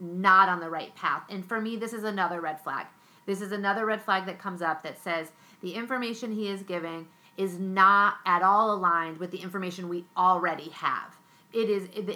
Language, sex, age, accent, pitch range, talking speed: English, female, 30-49, American, 170-200 Hz, 205 wpm